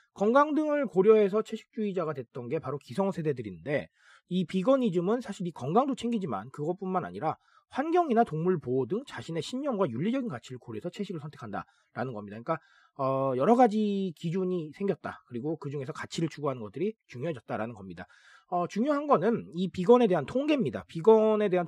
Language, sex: Korean, male